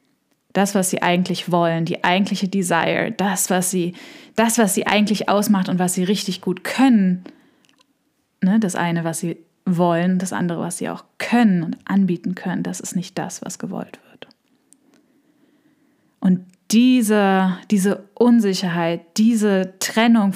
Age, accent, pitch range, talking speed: 10-29, German, 180-220 Hz, 140 wpm